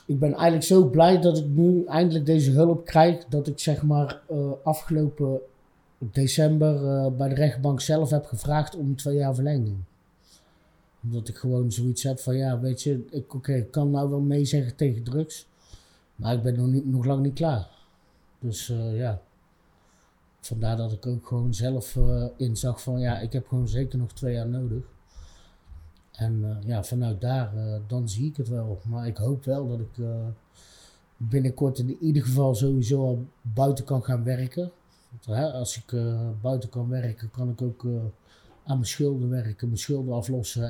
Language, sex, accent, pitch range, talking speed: Dutch, male, Dutch, 115-140 Hz, 185 wpm